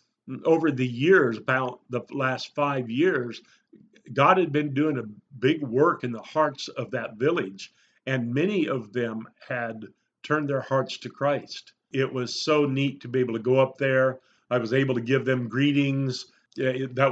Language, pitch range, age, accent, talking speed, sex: English, 125-150 Hz, 50-69, American, 175 wpm, male